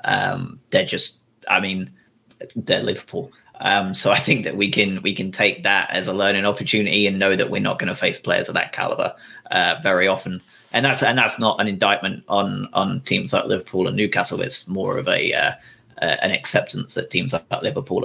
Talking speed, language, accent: 210 wpm, English, British